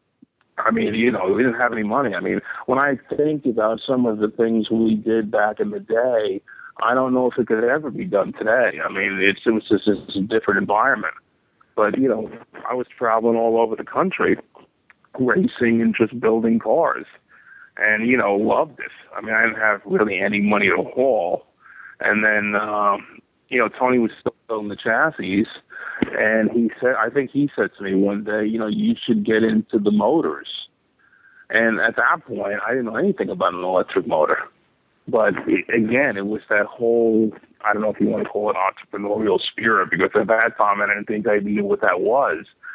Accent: American